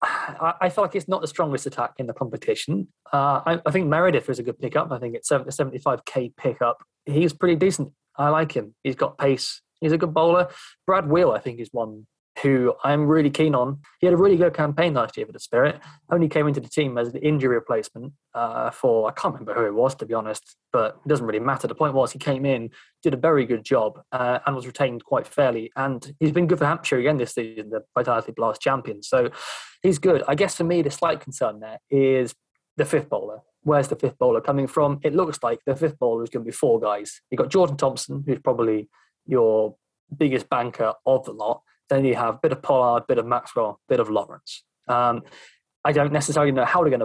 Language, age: English, 20-39